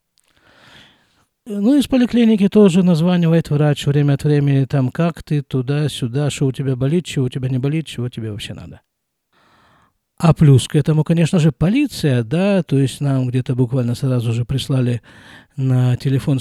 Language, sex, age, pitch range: Russian, male, 50-69, 130-185 Hz